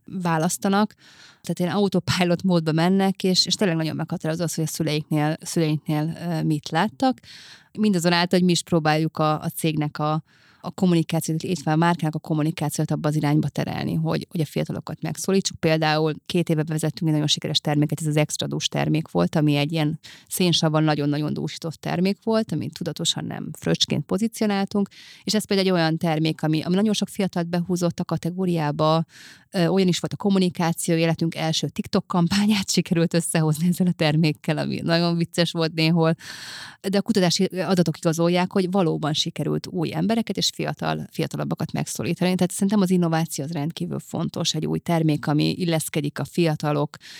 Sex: female